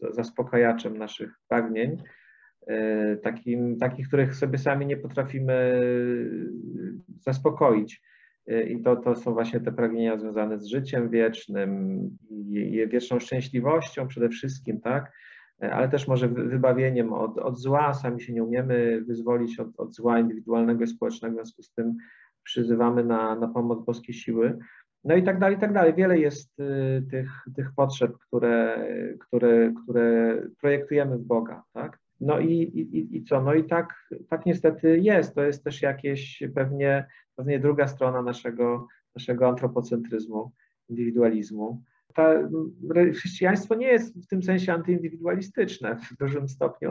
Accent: Polish